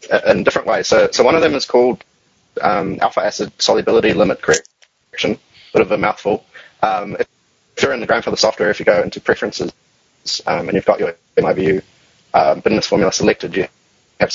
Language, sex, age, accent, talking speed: English, male, 20-39, Australian, 185 wpm